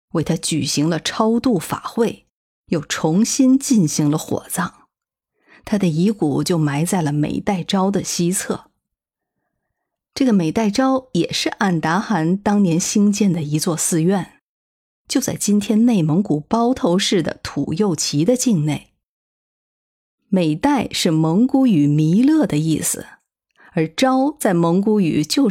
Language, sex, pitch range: Chinese, female, 160-230 Hz